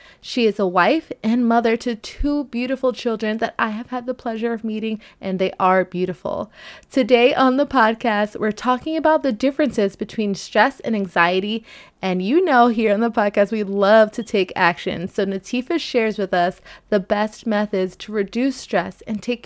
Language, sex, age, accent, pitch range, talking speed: English, female, 20-39, American, 200-245 Hz, 185 wpm